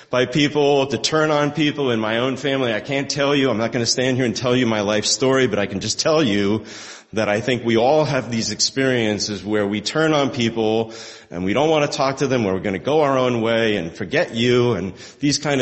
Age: 40-59